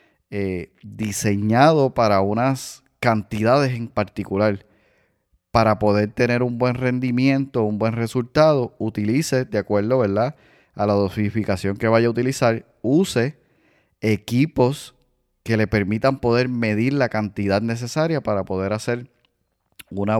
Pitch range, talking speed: 105-135 Hz, 120 wpm